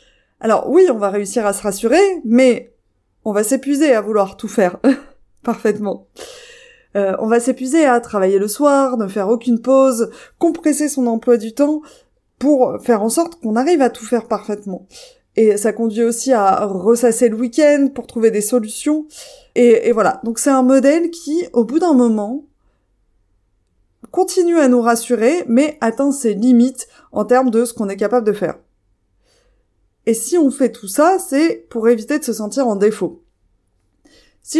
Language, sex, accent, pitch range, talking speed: French, female, French, 220-285 Hz, 175 wpm